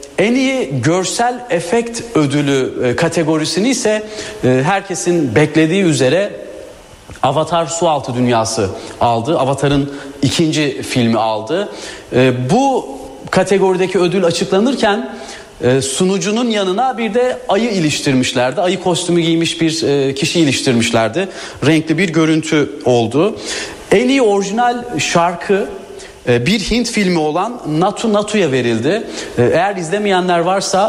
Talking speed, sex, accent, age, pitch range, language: 105 wpm, male, native, 40-59, 140-195 Hz, Turkish